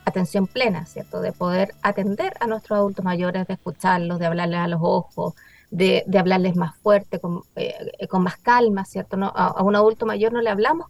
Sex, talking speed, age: female, 200 wpm, 30-49